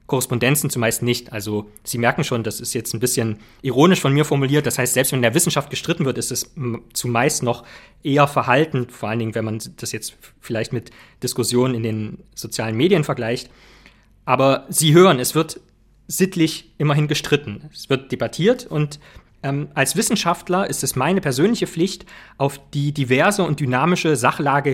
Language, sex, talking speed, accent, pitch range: German, male, 175 wpm, German, 125-170 Hz